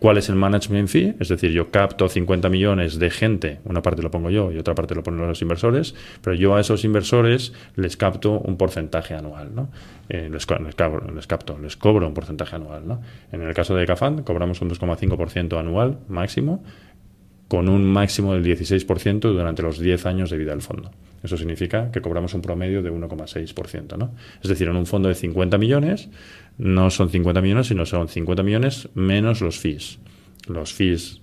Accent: Spanish